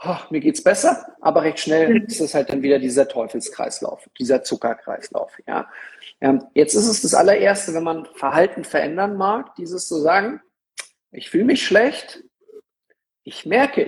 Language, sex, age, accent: German, male, 50-69, German